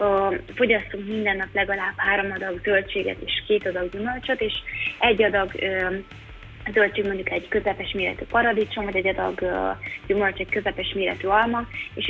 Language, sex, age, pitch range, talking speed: Hungarian, female, 20-39, 190-215 Hz, 160 wpm